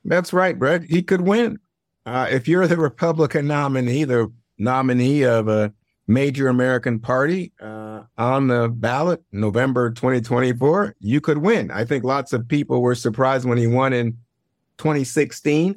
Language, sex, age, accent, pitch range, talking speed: English, male, 50-69, American, 115-150 Hz, 150 wpm